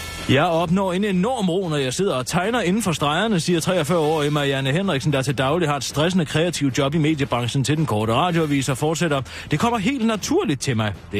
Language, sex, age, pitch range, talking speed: Danish, male, 30-49, 115-165 Hz, 210 wpm